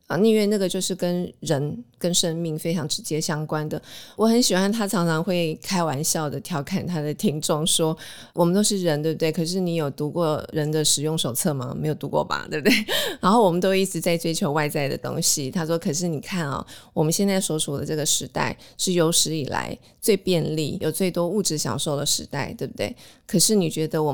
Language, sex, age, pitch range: Chinese, female, 20-39, 155-190 Hz